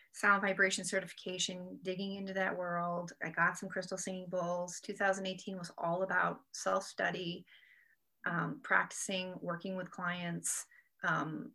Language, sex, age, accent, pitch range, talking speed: English, female, 30-49, American, 175-205 Hz, 120 wpm